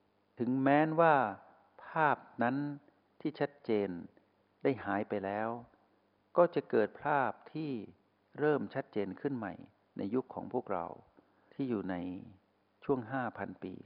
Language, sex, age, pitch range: Thai, male, 60-79, 100-120 Hz